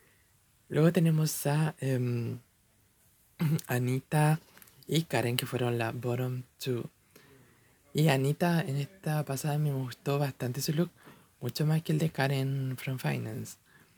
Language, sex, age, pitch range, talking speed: Spanish, male, 20-39, 120-140 Hz, 130 wpm